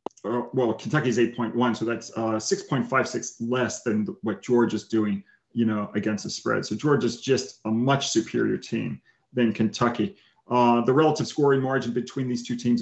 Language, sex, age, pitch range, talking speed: English, male, 30-49, 110-125 Hz, 170 wpm